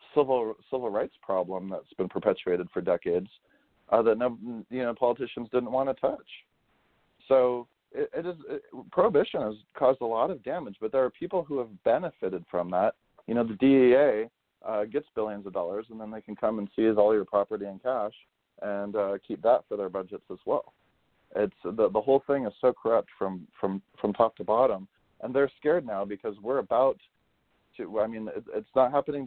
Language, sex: English, male